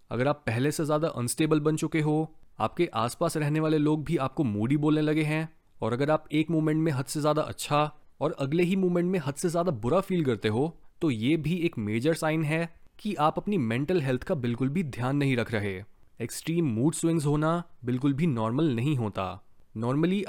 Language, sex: Hindi, male